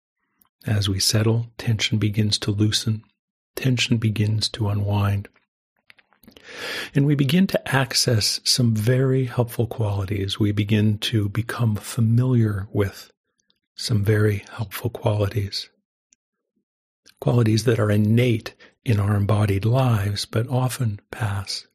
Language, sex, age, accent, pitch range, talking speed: English, male, 50-69, American, 105-120 Hz, 115 wpm